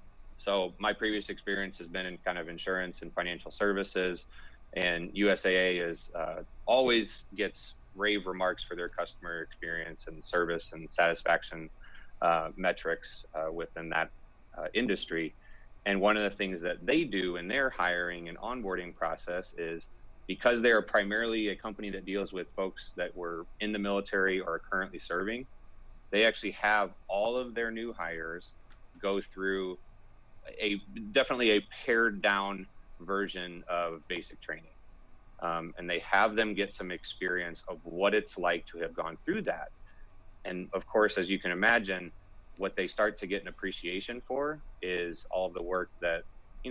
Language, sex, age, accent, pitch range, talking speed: English, male, 30-49, American, 90-105 Hz, 160 wpm